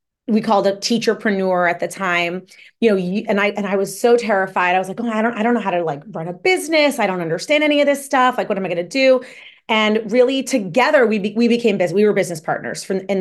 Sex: female